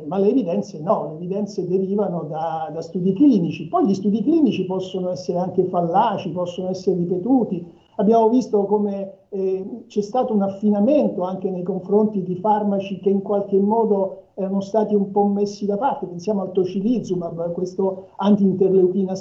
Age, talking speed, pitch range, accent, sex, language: 60-79, 160 wpm, 185-215 Hz, native, male, Italian